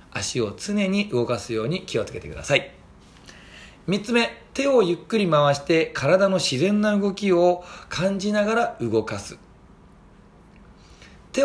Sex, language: male, Japanese